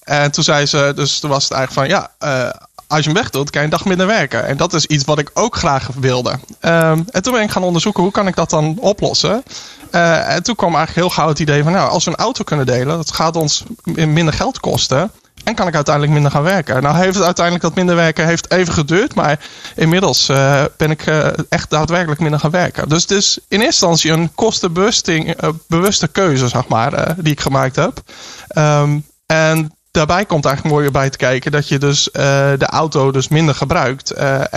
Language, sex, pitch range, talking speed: Dutch, male, 145-175 Hz, 225 wpm